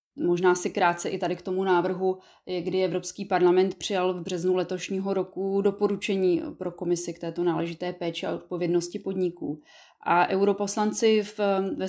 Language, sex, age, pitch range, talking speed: Czech, female, 20-39, 175-195 Hz, 145 wpm